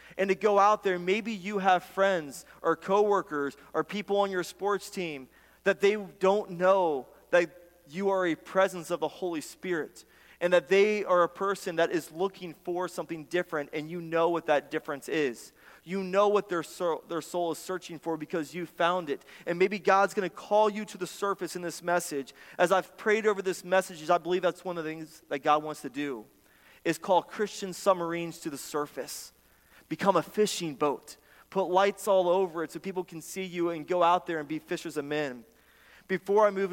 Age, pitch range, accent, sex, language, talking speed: 30-49, 160-190 Hz, American, male, English, 205 wpm